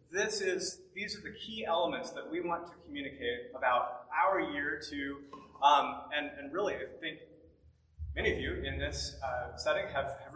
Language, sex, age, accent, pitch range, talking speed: English, male, 30-49, American, 125-190 Hz, 180 wpm